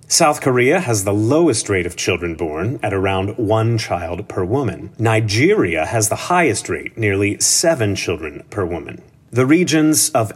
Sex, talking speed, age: male, 160 wpm, 30-49